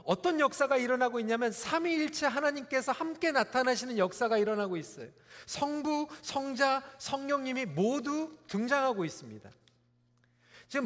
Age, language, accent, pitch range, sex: 40-59, Korean, native, 200-275 Hz, male